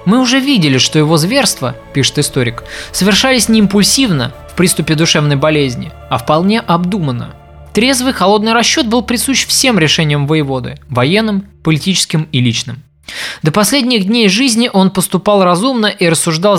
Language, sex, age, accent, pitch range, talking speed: Russian, male, 20-39, native, 140-205 Hz, 145 wpm